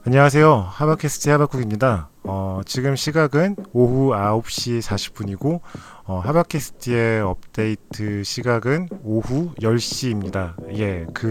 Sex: male